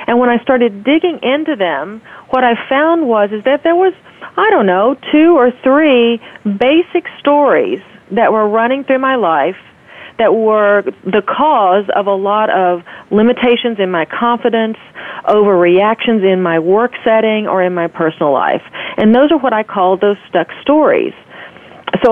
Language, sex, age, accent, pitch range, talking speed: English, female, 40-59, American, 190-255 Hz, 165 wpm